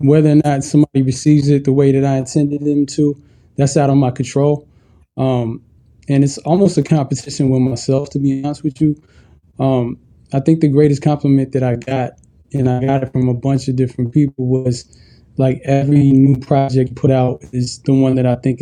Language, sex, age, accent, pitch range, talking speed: English, male, 20-39, American, 130-145 Hz, 205 wpm